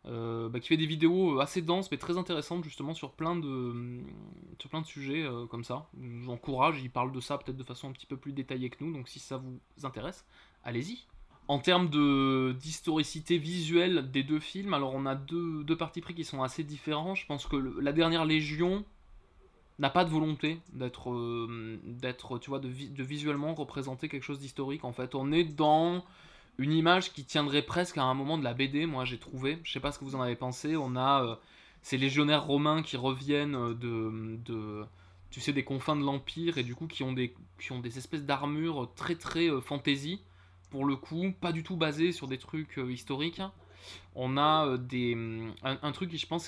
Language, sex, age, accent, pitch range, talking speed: French, male, 20-39, French, 125-160 Hz, 215 wpm